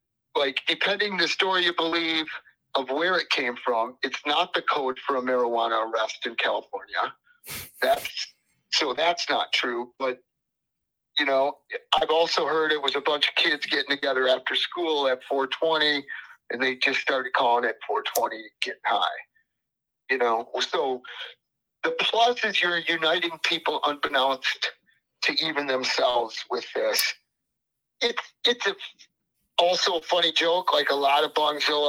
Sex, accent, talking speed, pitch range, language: male, American, 150 wpm, 135-195 Hz, English